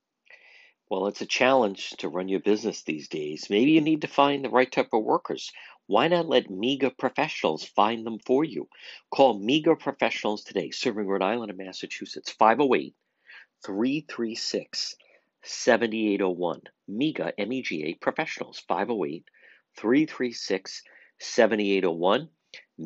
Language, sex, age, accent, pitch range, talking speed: English, male, 50-69, American, 105-145 Hz, 115 wpm